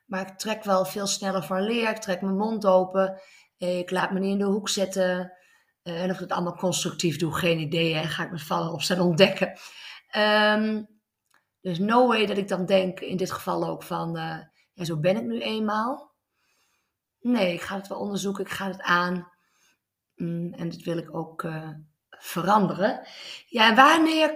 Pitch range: 175-220 Hz